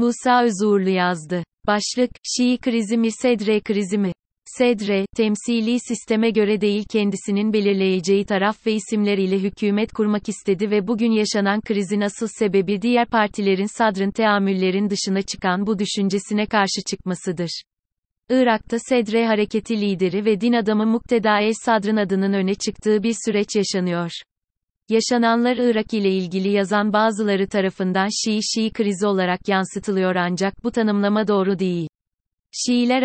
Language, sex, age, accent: Turkish, female, 30-49, native